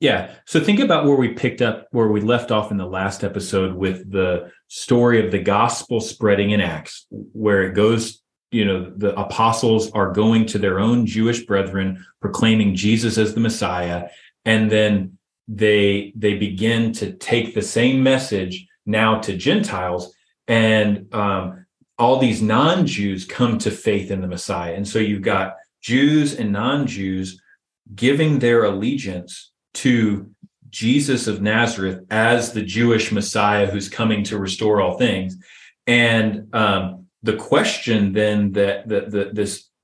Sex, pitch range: male, 100-115 Hz